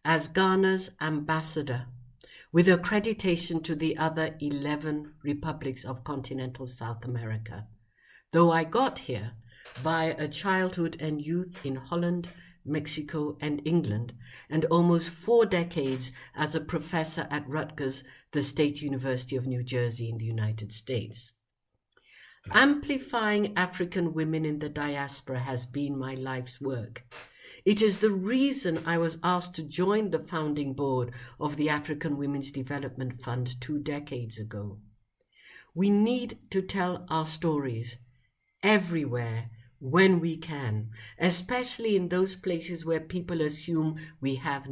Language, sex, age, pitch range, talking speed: English, female, 60-79, 130-175 Hz, 130 wpm